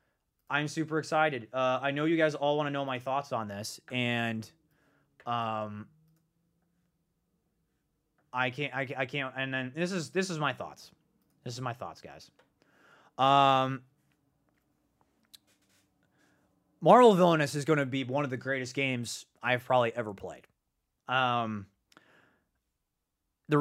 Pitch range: 125-150 Hz